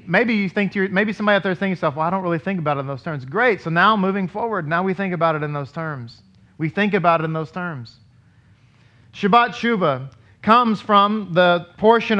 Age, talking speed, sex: 40-59, 235 wpm, male